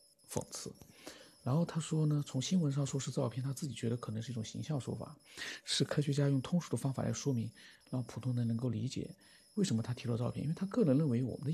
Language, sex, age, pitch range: Chinese, male, 50-69, 120-150 Hz